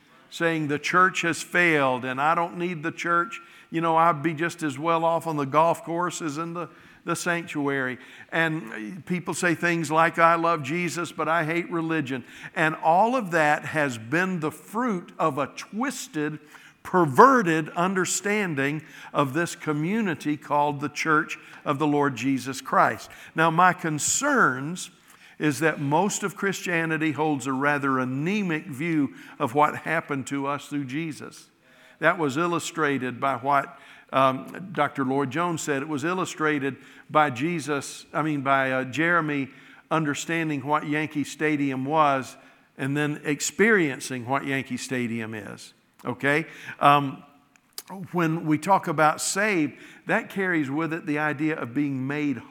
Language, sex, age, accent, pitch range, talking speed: English, male, 60-79, American, 145-170 Hz, 150 wpm